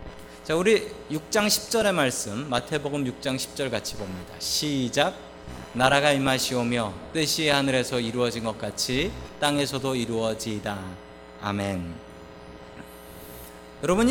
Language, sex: Korean, male